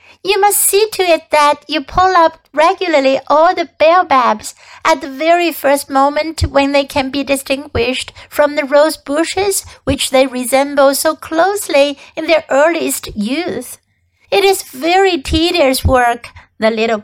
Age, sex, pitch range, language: 60-79, female, 275-335 Hz, Chinese